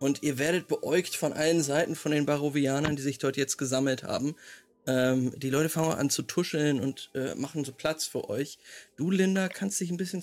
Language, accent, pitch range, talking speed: German, German, 140-185 Hz, 210 wpm